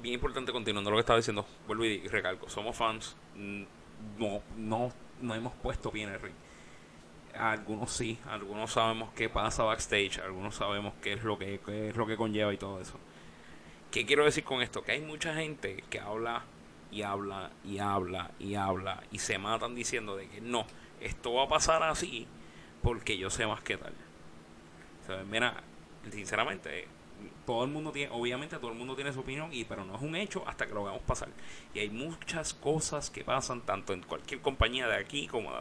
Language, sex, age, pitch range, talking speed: English, male, 30-49, 95-125 Hz, 195 wpm